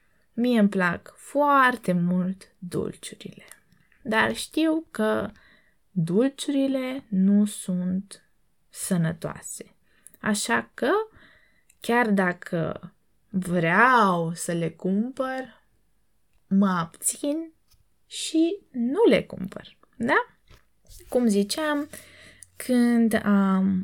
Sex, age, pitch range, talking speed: female, 20-39, 180-240 Hz, 80 wpm